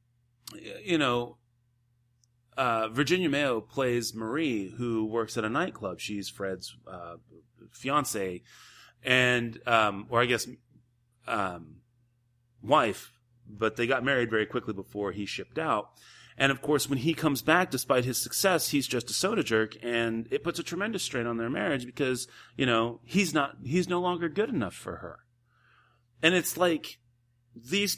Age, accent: 30-49, American